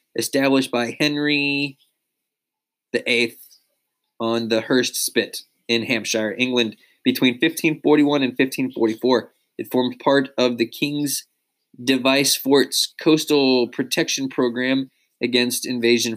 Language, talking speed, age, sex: English, 105 wpm, 20-39, male